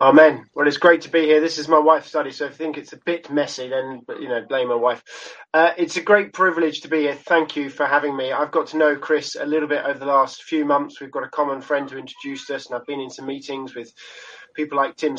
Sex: male